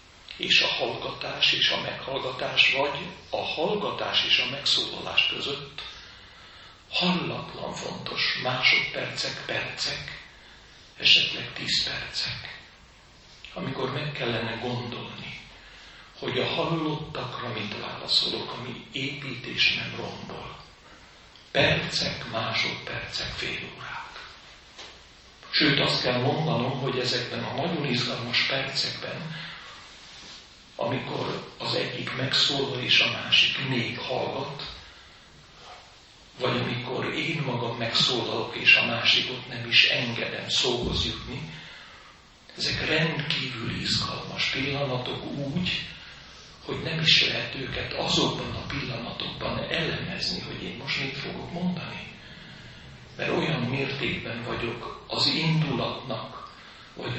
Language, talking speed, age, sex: Hungarian, 100 wpm, 60-79, male